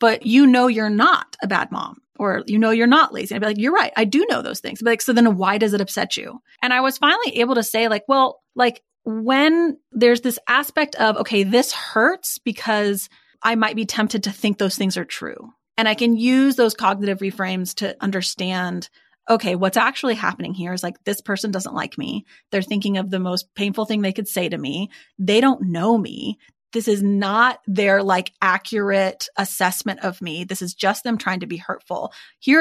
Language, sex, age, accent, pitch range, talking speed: English, female, 30-49, American, 190-235 Hz, 215 wpm